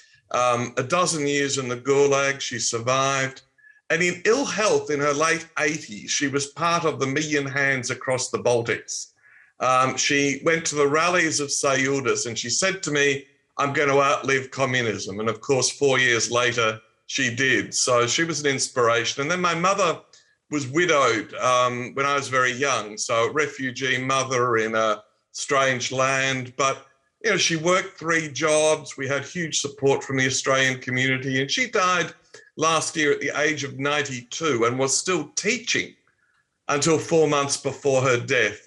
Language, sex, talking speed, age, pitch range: English, male, 175 wpm, 50-69, 125-155 Hz